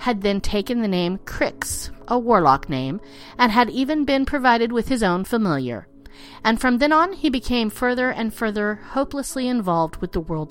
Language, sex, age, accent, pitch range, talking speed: English, female, 40-59, American, 180-275 Hz, 185 wpm